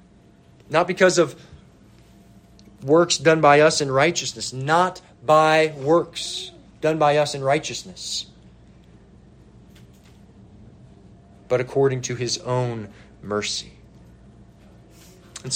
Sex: male